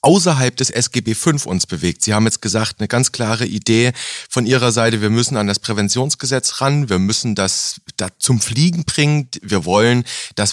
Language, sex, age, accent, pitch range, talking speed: German, male, 30-49, German, 105-135 Hz, 190 wpm